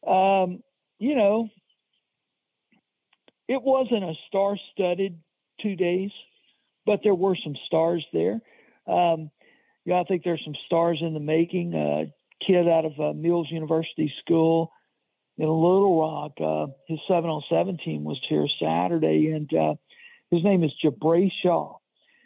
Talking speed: 135 wpm